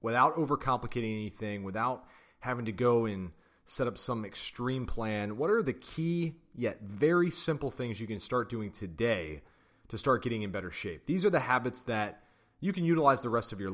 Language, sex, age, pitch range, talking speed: English, male, 30-49, 105-135 Hz, 190 wpm